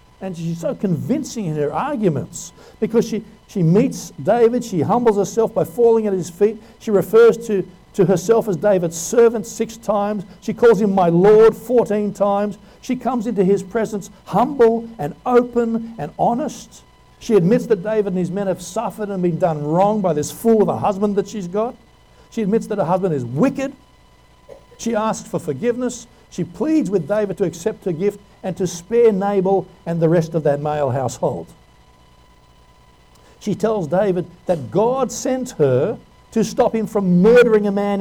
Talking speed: 180 wpm